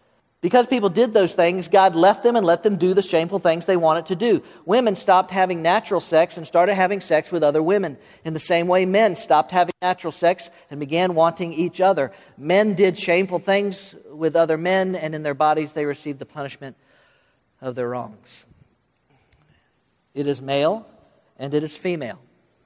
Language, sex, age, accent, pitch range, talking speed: English, male, 50-69, American, 150-190 Hz, 185 wpm